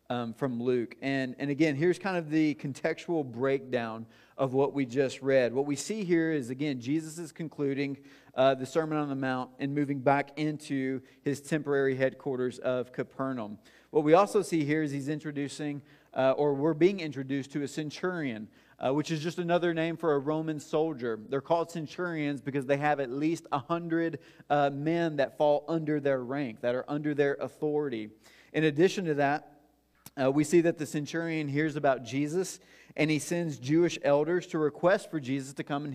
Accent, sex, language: American, male, English